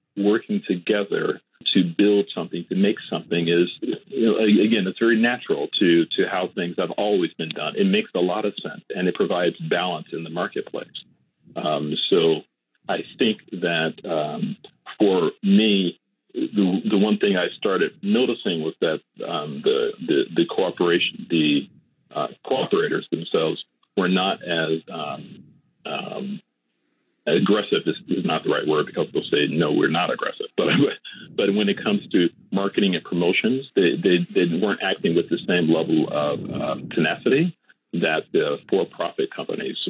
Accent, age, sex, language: American, 40-59, male, English